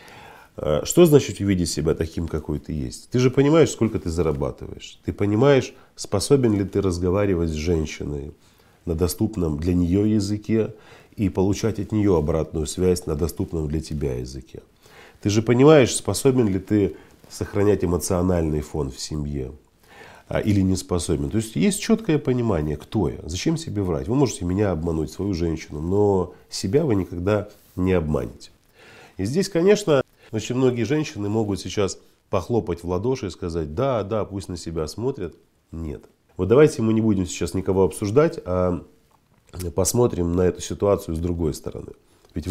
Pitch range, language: 85-110 Hz, Russian